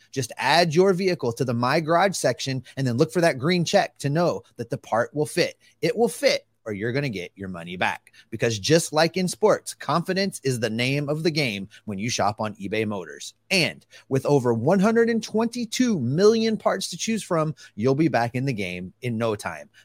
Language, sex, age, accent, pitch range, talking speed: English, male, 30-49, American, 110-170 Hz, 210 wpm